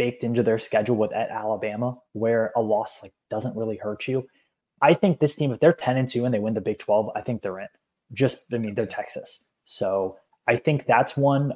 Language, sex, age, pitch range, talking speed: English, male, 20-39, 110-130 Hz, 230 wpm